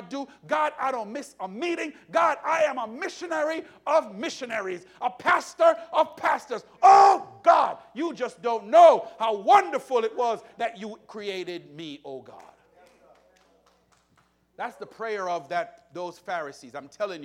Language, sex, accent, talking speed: English, male, American, 150 wpm